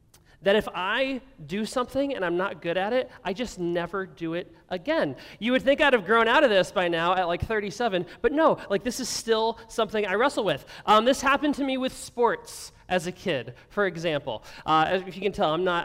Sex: male